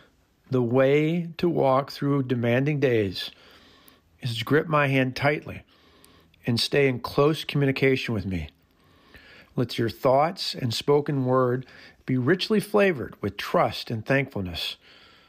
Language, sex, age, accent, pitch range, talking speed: English, male, 50-69, American, 125-155 Hz, 130 wpm